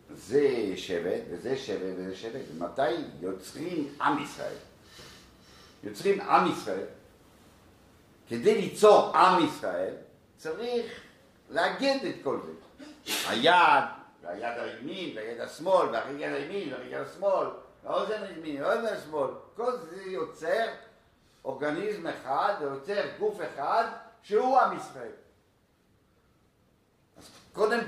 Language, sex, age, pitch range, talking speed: Hebrew, male, 60-79, 140-235 Hz, 100 wpm